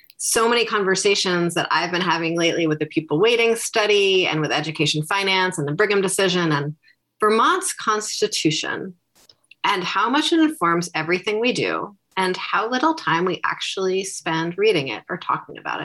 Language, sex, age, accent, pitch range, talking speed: English, female, 30-49, American, 155-210 Hz, 165 wpm